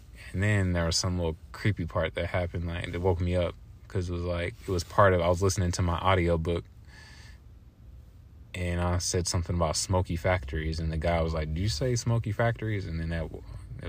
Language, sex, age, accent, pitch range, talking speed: English, male, 20-39, American, 85-105 Hz, 220 wpm